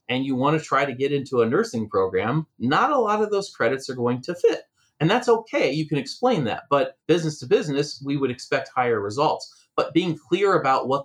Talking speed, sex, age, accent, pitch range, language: 230 wpm, male, 30-49, American, 120-160 Hz, English